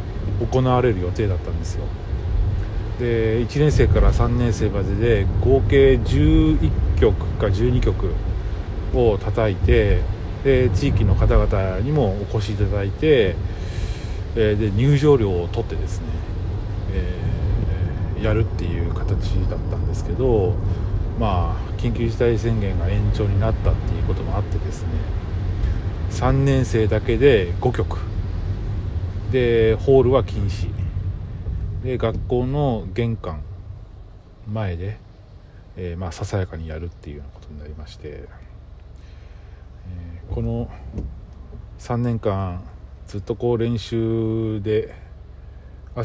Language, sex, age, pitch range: Japanese, male, 40-59, 90-110 Hz